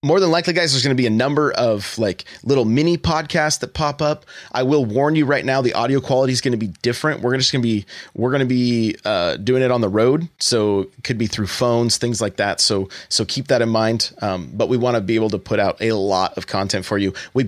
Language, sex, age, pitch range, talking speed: English, male, 30-49, 105-140 Hz, 270 wpm